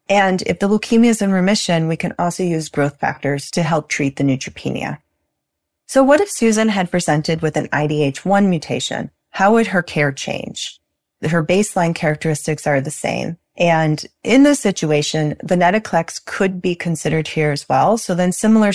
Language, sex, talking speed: English, female, 170 wpm